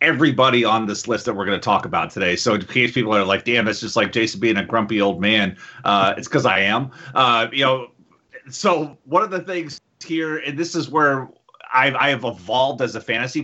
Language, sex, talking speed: English, male, 230 wpm